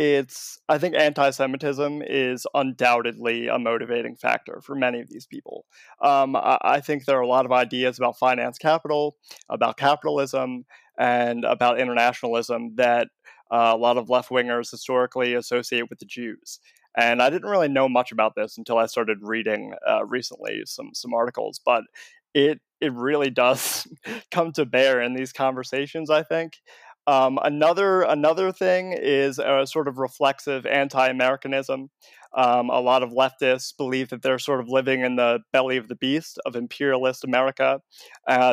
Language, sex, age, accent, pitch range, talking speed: English, male, 20-39, American, 125-140 Hz, 160 wpm